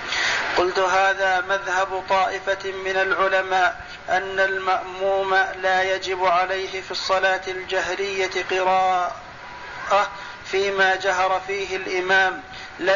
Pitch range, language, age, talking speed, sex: 190-195 Hz, Arabic, 40-59, 95 wpm, male